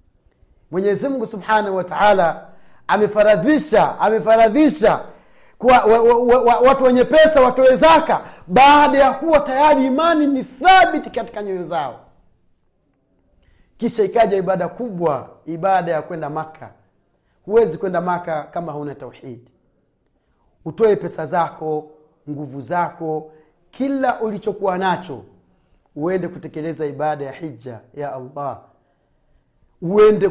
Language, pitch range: Swahili, 160-275 Hz